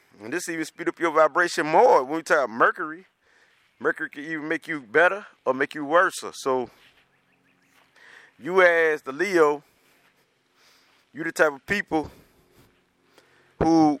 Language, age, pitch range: English, 30-49, 130-160 Hz